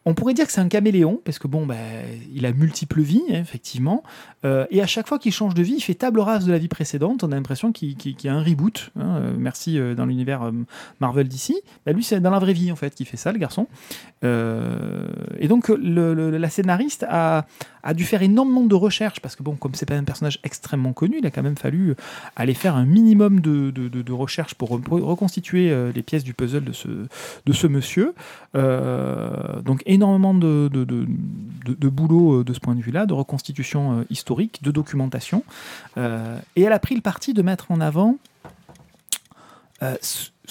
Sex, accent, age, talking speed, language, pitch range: male, French, 30-49, 215 wpm, French, 135-195 Hz